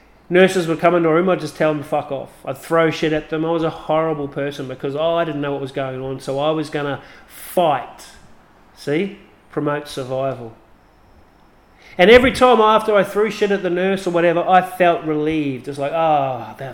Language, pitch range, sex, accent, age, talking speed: English, 140-175 Hz, male, Australian, 30-49, 220 wpm